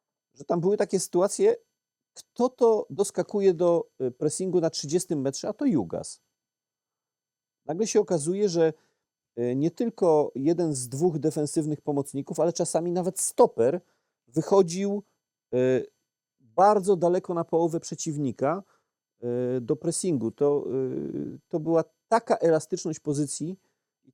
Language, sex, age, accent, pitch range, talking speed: Polish, male, 40-59, native, 135-175 Hz, 115 wpm